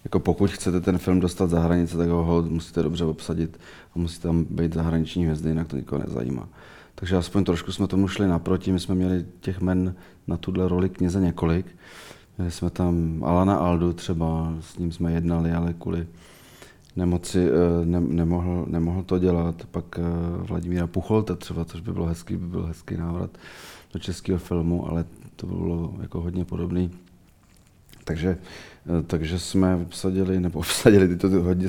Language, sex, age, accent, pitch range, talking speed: Czech, male, 40-59, native, 85-95 Hz, 165 wpm